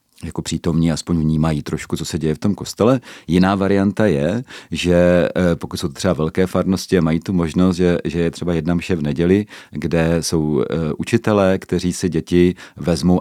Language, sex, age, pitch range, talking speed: Czech, male, 40-59, 80-95 Hz, 175 wpm